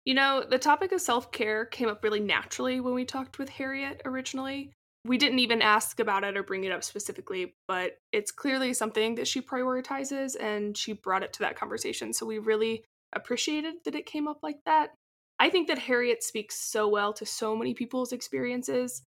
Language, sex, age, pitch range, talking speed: English, female, 20-39, 205-265 Hz, 200 wpm